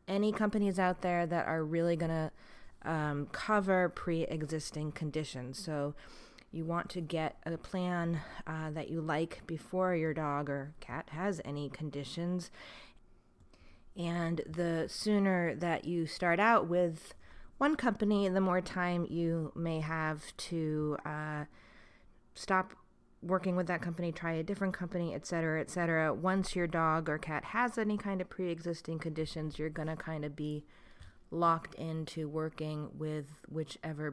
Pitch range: 150-175 Hz